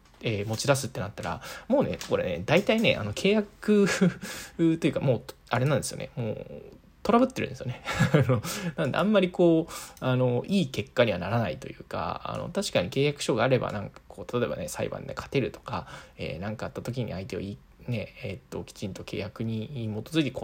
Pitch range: 115-185 Hz